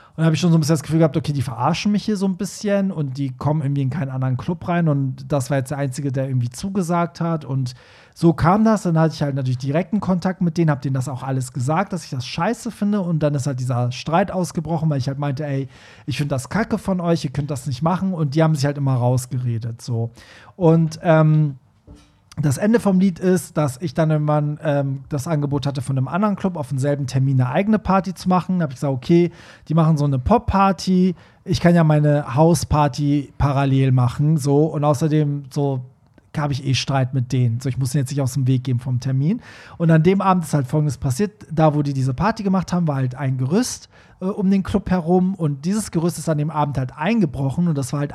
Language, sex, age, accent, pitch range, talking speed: German, male, 40-59, German, 135-175 Hz, 245 wpm